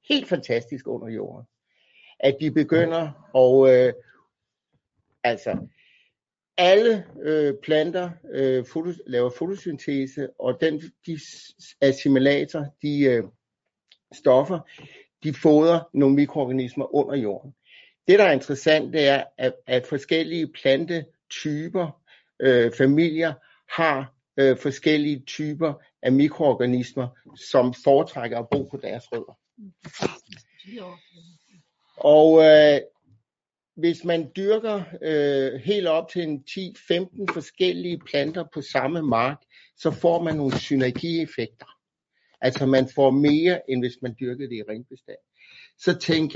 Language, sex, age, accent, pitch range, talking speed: Danish, male, 60-79, native, 135-165 Hz, 115 wpm